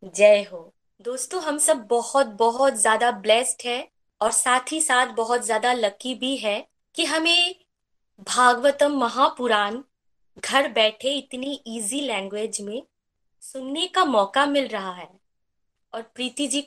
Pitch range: 225-280 Hz